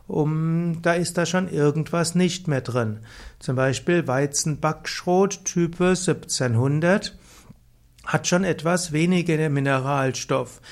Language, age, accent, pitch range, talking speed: German, 60-79, German, 135-170 Hz, 105 wpm